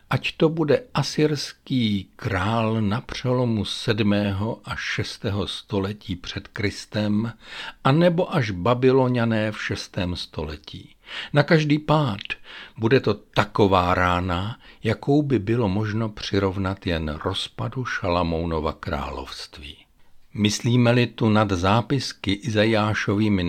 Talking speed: 105 wpm